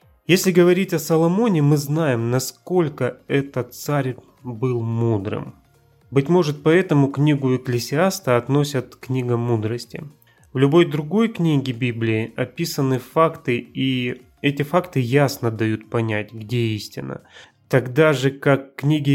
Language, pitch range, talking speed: Russian, 120-150 Hz, 120 wpm